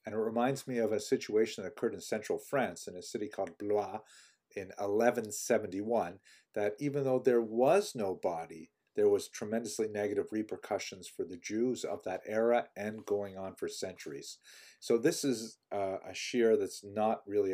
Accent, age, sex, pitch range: American, 50-69, male, 100-150 Hz